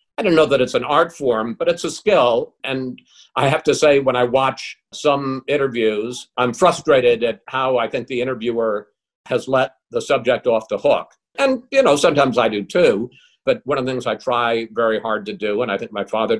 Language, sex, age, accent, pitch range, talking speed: English, male, 50-69, American, 115-155 Hz, 215 wpm